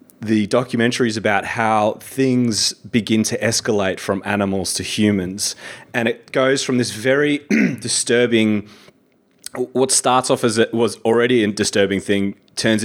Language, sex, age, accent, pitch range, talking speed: English, male, 30-49, Australian, 95-120 Hz, 145 wpm